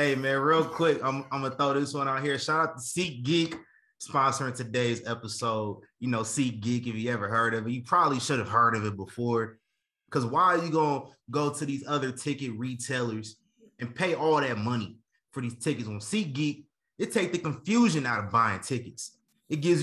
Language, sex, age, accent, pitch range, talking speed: English, male, 20-39, American, 115-150 Hz, 205 wpm